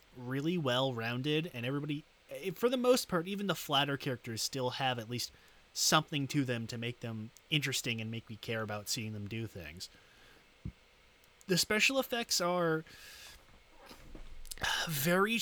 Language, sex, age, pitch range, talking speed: English, male, 30-49, 125-160 Hz, 145 wpm